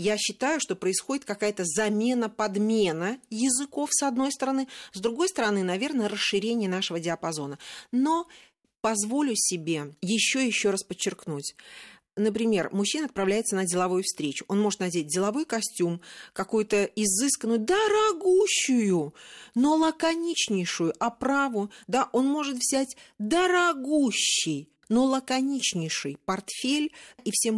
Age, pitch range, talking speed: 40-59, 180-245 Hz, 115 wpm